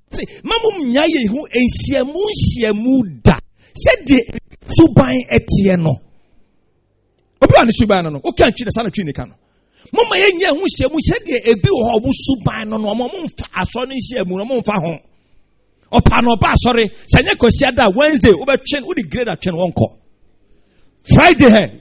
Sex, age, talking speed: male, 50-69, 135 wpm